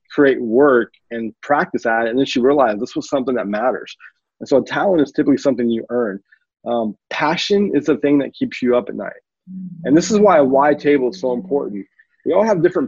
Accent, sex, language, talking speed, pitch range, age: American, male, English, 225 wpm, 115-145 Hz, 30-49